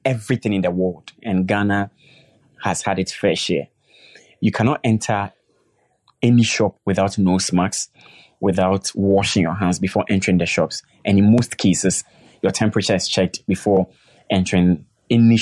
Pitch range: 90-105 Hz